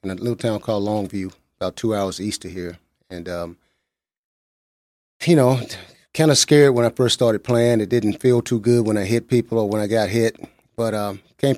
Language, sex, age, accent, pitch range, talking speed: English, male, 30-49, American, 100-115 Hz, 210 wpm